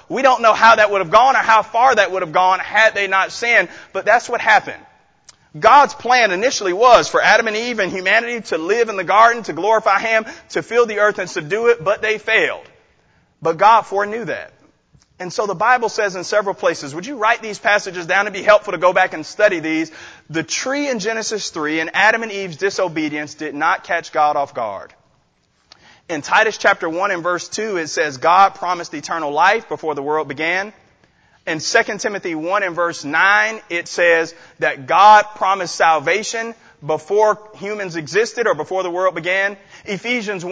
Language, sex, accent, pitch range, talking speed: English, male, American, 180-230 Hz, 200 wpm